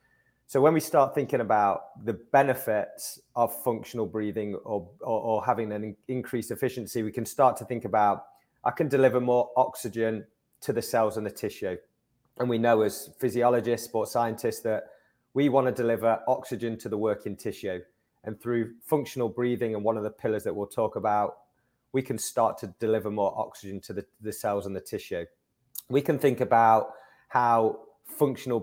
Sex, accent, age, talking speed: male, British, 30-49, 175 wpm